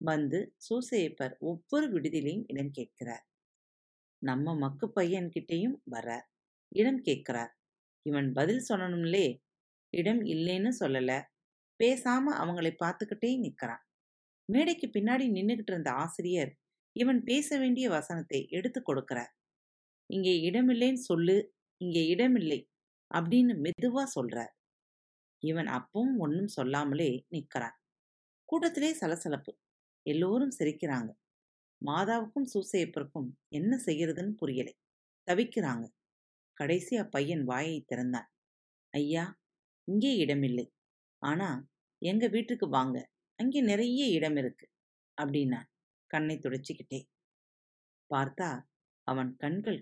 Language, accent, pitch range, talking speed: Tamil, native, 135-220 Hz, 85 wpm